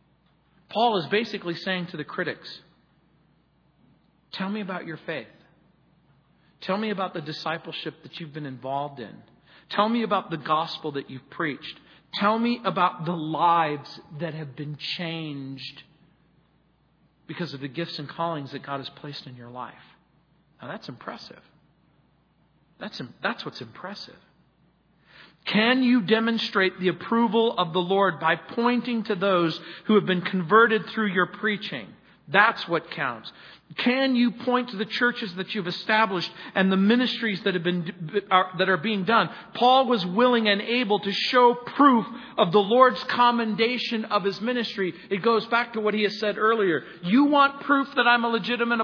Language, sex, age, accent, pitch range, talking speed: English, male, 40-59, American, 160-225 Hz, 160 wpm